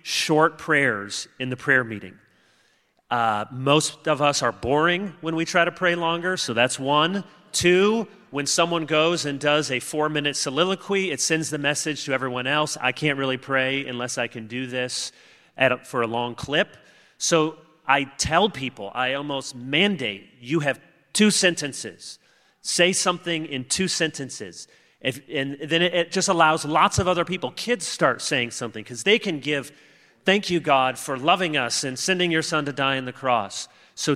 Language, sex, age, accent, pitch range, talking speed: English, male, 30-49, American, 125-165 Hz, 175 wpm